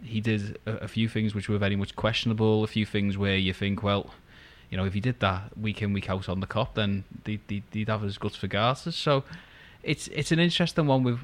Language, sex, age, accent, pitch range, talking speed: English, male, 20-39, British, 95-105 Hz, 245 wpm